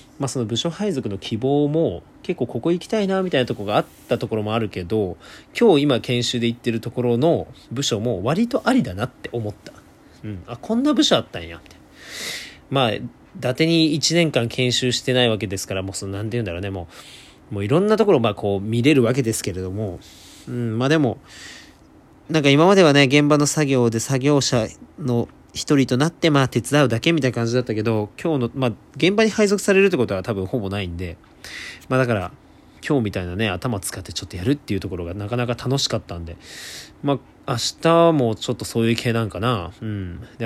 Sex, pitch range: male, 100-140 Hz